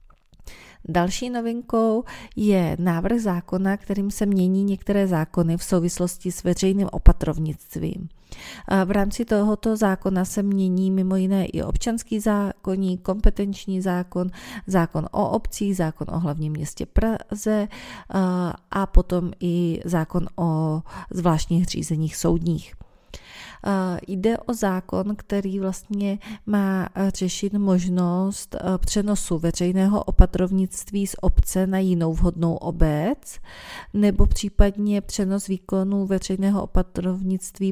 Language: Czech